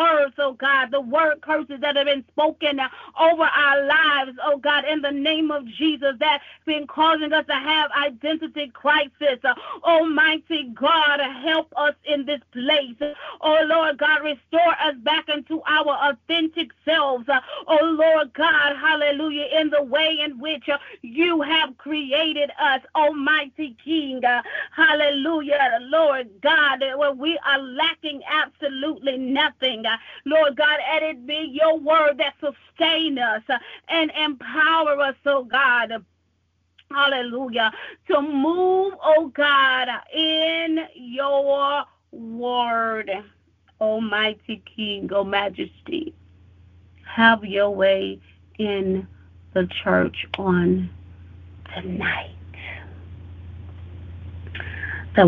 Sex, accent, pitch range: female, American, 220-310 Hz